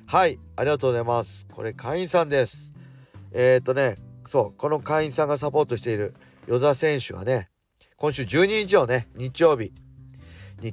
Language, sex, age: Japanese, male, 40-59